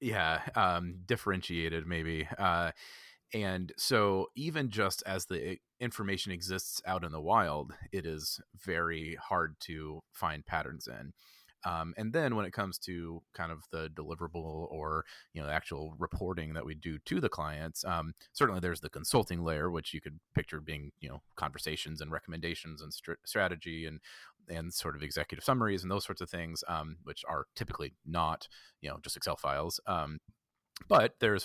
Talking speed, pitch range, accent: 175 wpm, 80-95 Hz, American